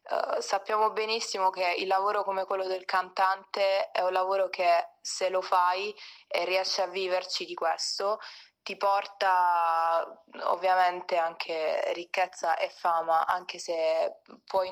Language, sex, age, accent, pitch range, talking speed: Italian, female, 20-39, native, 185-215 Hz, 130 wpm